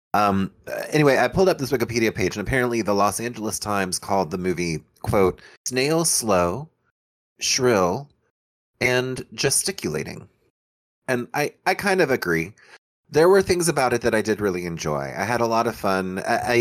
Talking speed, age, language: 165 wpm, 30-49, English